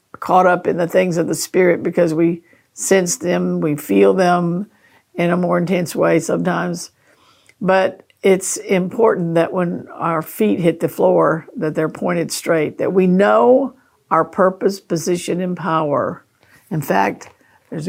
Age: 50-69